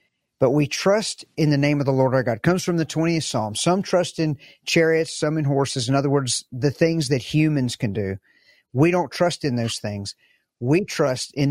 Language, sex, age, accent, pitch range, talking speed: English, male, 50-69, American, 140-165 Hz, 220 wpm